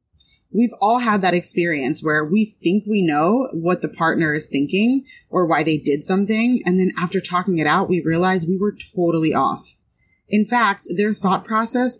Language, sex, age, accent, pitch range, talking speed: English, female, 30-49, American, 165-215 Hz, 185 wpm